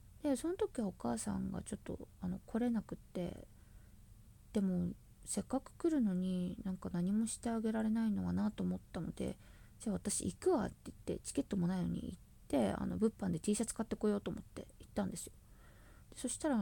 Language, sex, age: Japanese, female, 20-39